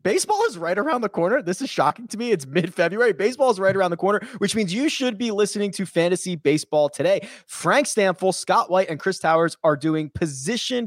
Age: 20-39